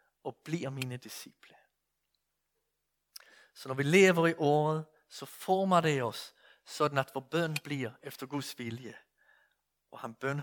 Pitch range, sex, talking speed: 130-180 Hz, male, 145 wpm